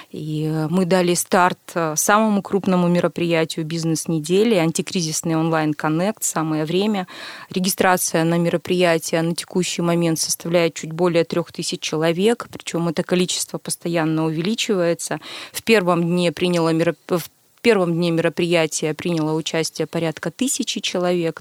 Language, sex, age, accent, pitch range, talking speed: Russian, female, 20-39, native, 165-195 Hz, 120 wpm